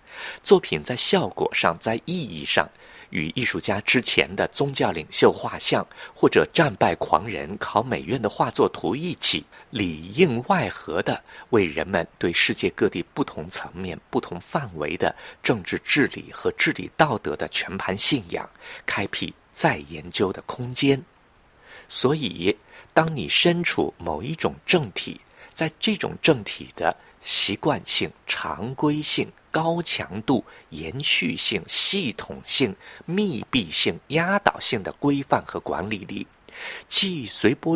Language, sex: Chinese, male